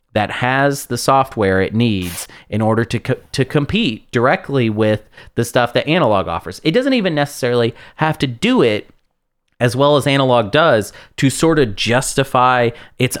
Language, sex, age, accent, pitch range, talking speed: English, male, 30-49, American, 105-130 Hz, 165 wpm